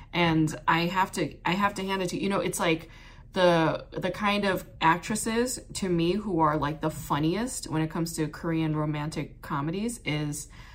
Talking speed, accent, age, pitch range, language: 190 wpm, American, 20-39, 155-200 Hz, English